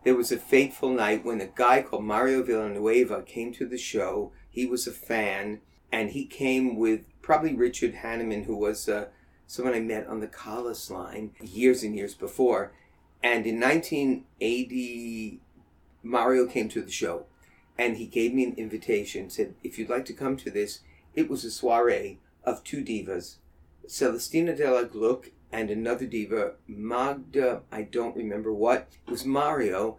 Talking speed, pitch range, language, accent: 165 wpm, 105-130 Hz, English, American